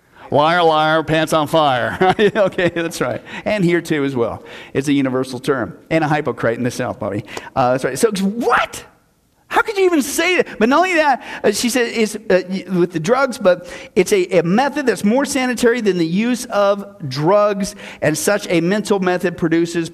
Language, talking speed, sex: English, 195 wpm, male